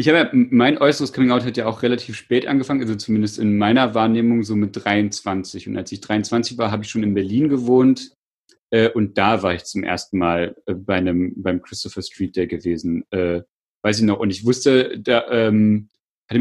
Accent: German